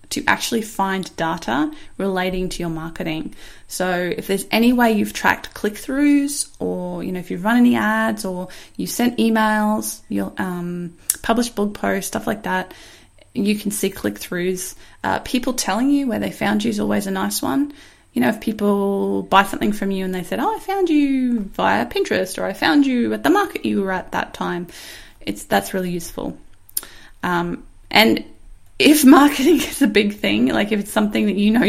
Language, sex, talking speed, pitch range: English, female, 190 wpm, 180-260 Hz